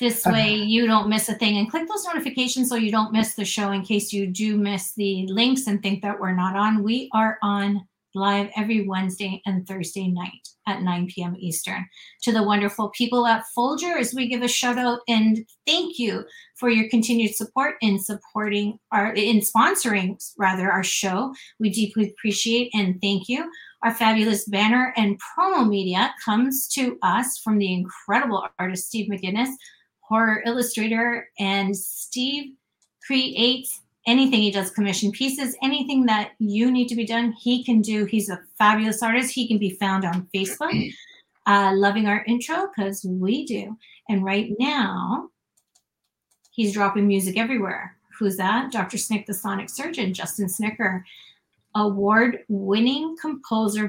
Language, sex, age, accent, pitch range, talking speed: English, female, 30-49, American, 200-240 Hz, 160 wpm